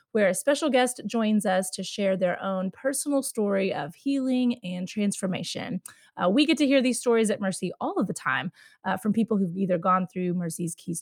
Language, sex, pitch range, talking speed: English, female, 190-250 Hz, 205 wpm